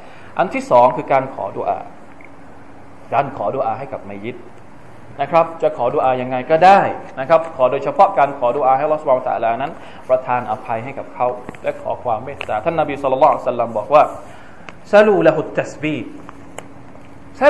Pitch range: 120-170 Hz